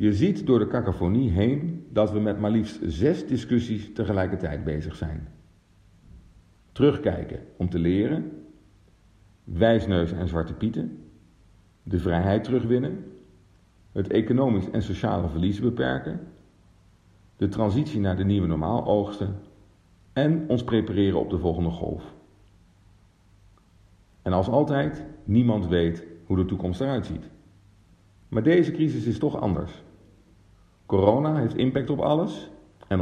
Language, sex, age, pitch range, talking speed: Dutch, male, 50-69, 90-110 Hz, 125 wpm